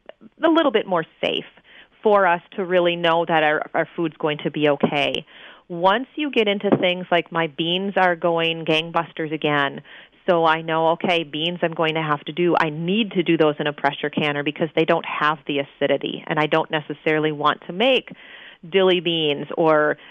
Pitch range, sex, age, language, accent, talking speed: 155-195 Hz, female, 30-49, English, American, 195 wpm